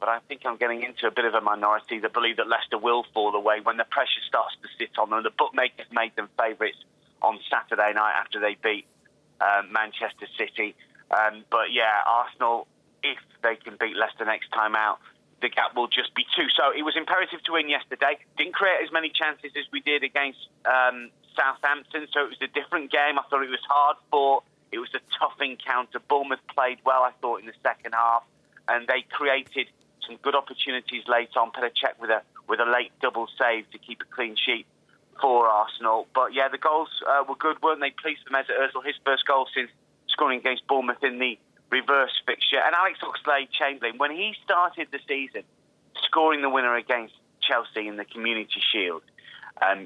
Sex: male